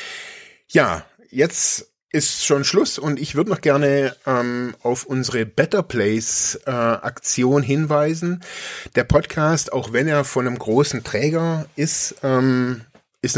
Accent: German